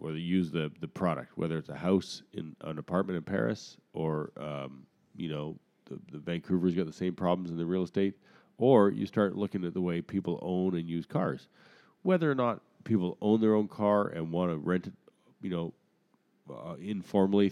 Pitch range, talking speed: 80-100 Hz, 200 wpm